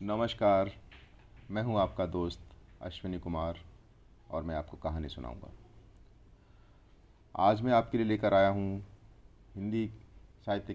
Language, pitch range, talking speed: Hindi, 90-110 Hz, 115 wpm